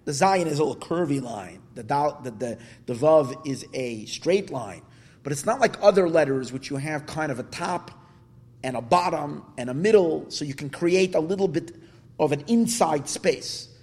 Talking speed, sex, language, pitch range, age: 205 wpm, male, English, 135-195 Hz, 30-49